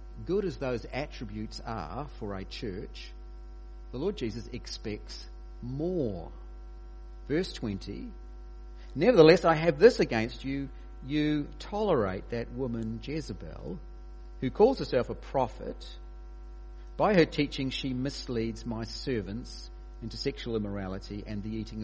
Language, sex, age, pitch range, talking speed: English, male, 50-69, 110-155 Hz, 120 wpm